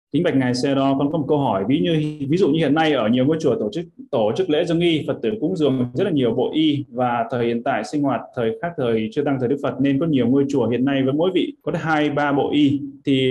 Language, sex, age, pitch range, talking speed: Vietnamese, male, 20-39, 125-155 Hz, 295 wpm